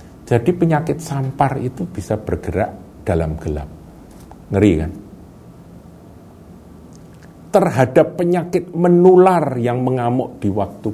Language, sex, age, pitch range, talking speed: Indonesian, male, 50-69, 85-135 Hz, 95 wpm